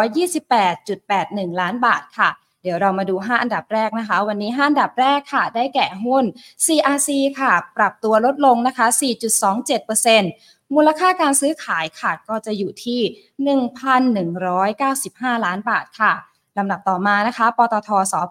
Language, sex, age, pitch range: Thai, female, 20-39, 195-260 Hz